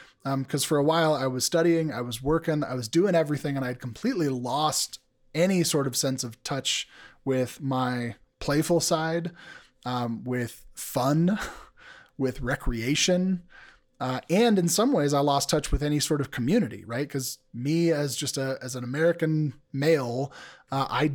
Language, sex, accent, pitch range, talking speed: English, male, American, 130-160 Hz, 170 wpm